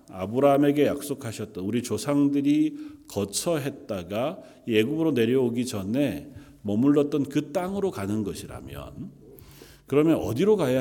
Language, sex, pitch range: Korean, male, 105-145 Hz